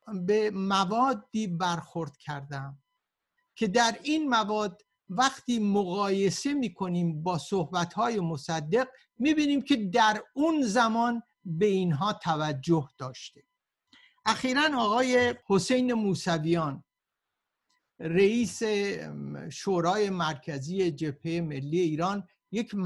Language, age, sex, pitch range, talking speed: Persian, 60-79, male, 180-240 Hz, 90 wpm